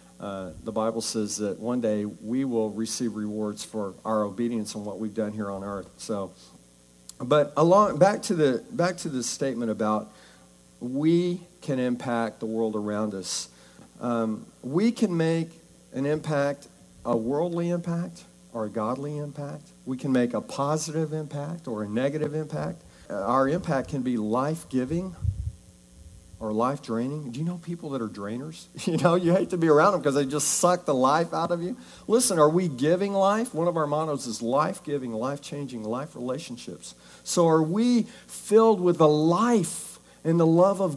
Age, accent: 50-69, American